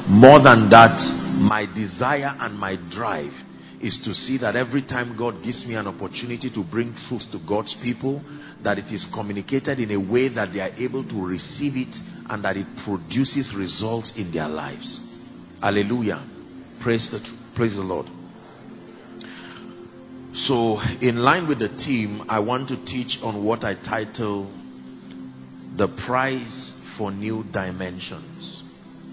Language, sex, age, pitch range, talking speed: English, male, 40-59, 95-120 Hz, 150 wpm